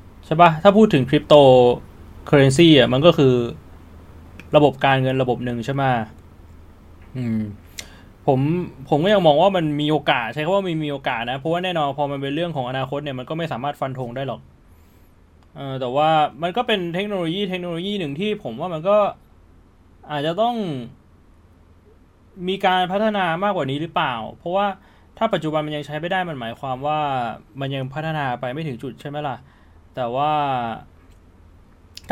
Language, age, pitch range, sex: Thai, 20-39, 120-175 Hz, male